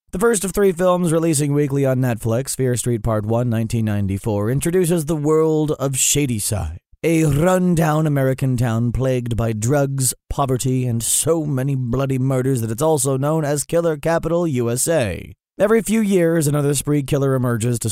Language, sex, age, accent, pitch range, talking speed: English, male, 30-49, American, 120-160 Hz, 160 wpm